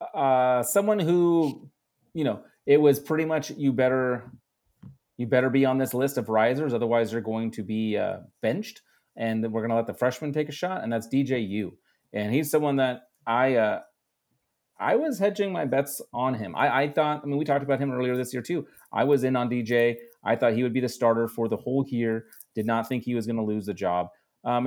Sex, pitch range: male, 115-140 Hz